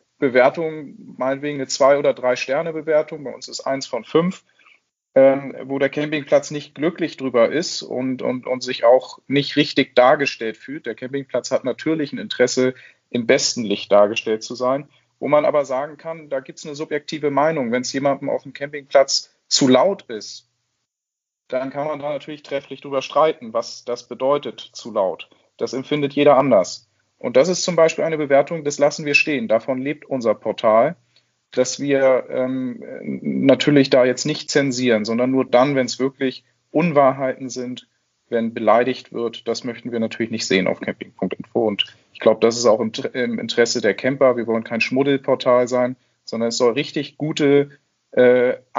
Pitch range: 125-145 Hz